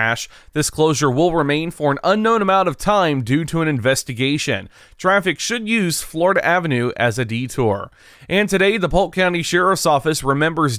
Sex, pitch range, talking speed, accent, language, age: male, 135-195 Hz, 165 wpm, American, English, 30-49